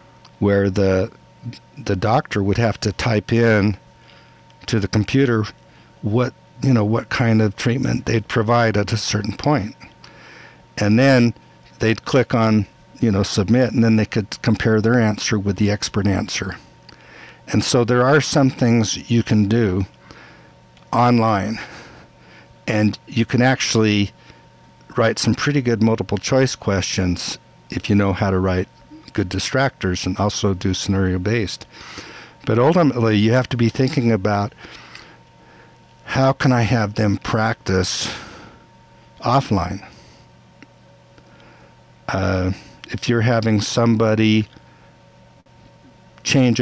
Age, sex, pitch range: 60-79, male, 95-120 Hz